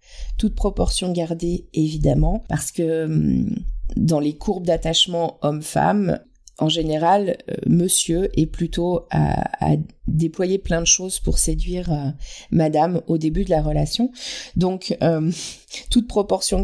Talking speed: 130 wpm